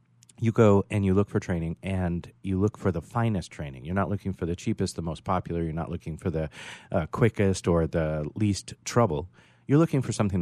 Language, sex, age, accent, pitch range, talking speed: English, male, 40-59, American, 80-110 Hz, 220 wpm